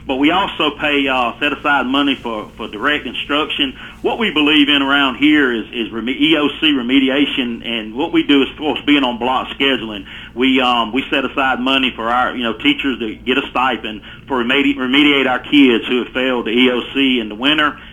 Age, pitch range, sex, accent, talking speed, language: 40-59, 120-150 Hz, male, American, 210 wpm, English